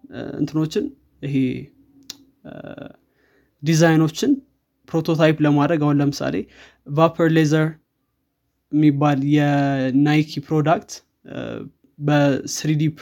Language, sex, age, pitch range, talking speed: Amharic, male, 20-39, 140-155 Hz, 60 wpm